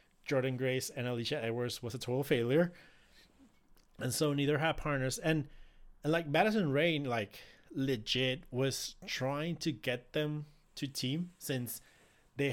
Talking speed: 145 wpm